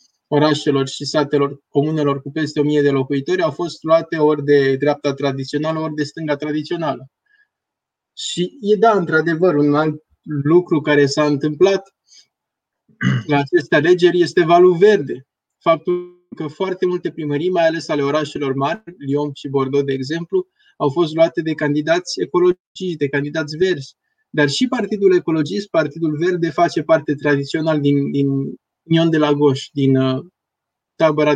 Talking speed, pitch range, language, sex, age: 150 wpm, 145-180 Hz, Romanian, male, 20-39